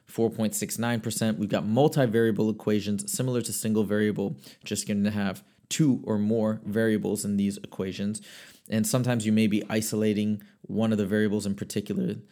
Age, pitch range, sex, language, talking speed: 20-39, 105-115 Hz, male, English, 155 wpm